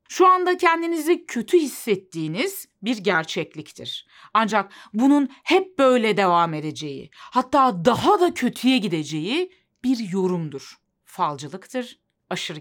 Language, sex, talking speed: Turkish, female, 105 wpm